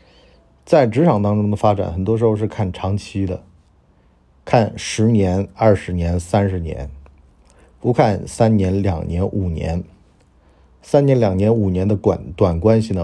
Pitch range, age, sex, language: 85-110 Hz, 50-69, male, Chinese